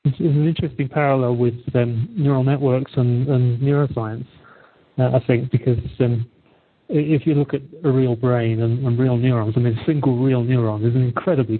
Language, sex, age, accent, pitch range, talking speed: English, male, 40-59, British, 120-135 Hz, 185 wpm